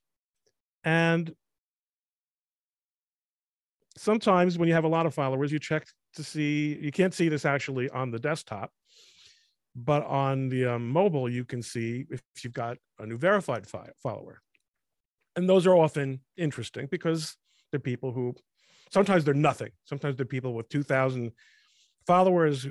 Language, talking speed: English, 145 wpm